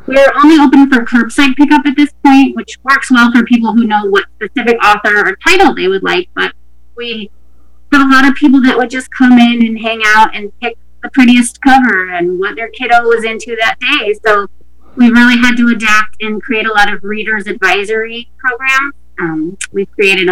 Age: 30-49